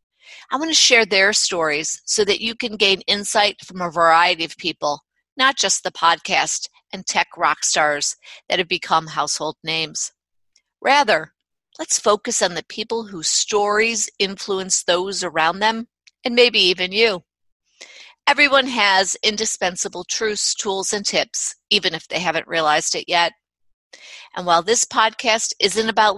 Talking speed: 150 wpm